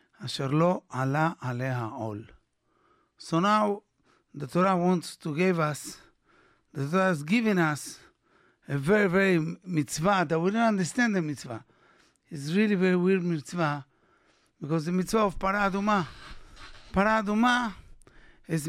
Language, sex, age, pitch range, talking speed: English, male, 60-79, 150-190 Hz, 120 wpm